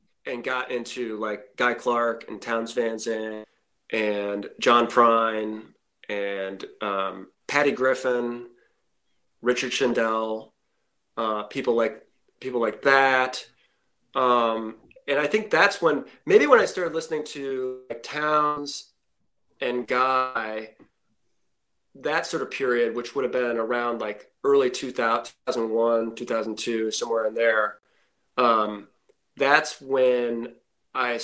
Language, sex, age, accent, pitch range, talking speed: English, male, 30-49, American, 110-130 Hz, 120 wpm